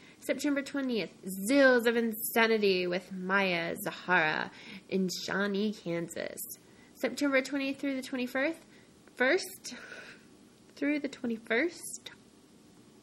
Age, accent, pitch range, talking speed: 20-39, American, 200-260 Hz, 90 wpm